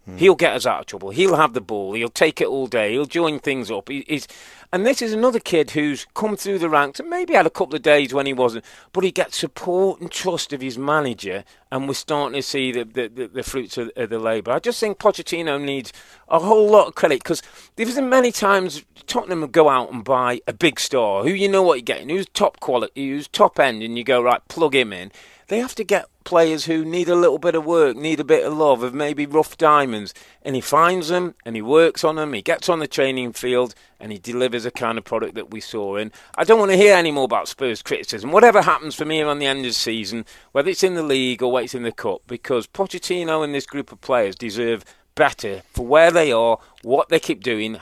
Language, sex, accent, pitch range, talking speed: English, male, British, 125-180 Hz, 255 wpm